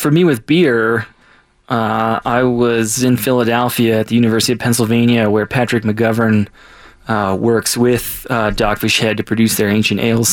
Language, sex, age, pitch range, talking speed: English, male, 20-39, 105-120 Hz, 165 wpm